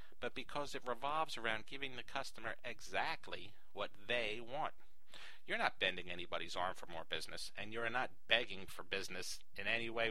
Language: English